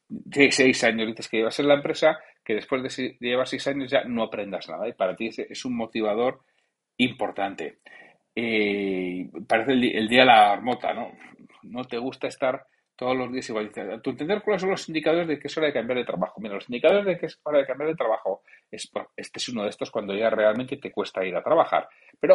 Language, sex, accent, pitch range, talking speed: Spanish, male, Spanish, 120-165 Hz, 235 wpm